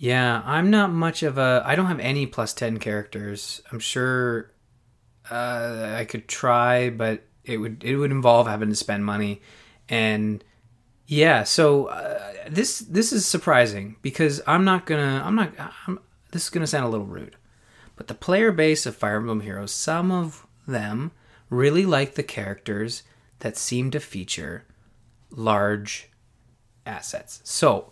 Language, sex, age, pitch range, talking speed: English, male, 20-39, 110-140 Hz, 155 wpm